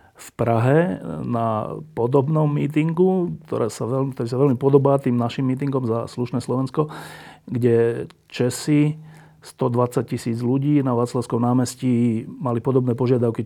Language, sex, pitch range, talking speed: Slovak, male, 120-140 Hz, 115 wpm